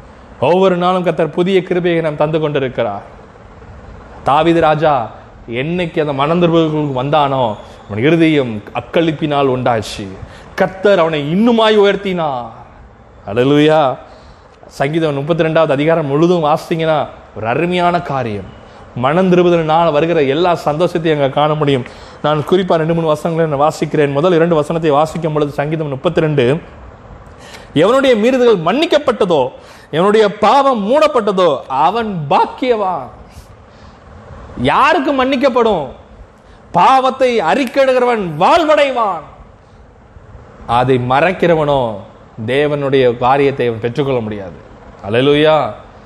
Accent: native